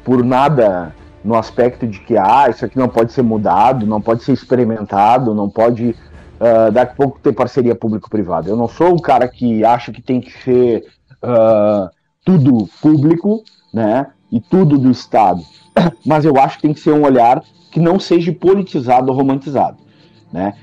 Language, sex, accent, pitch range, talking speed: Portuguese, male, Brazilian, 115-145 Hz, 170 wpm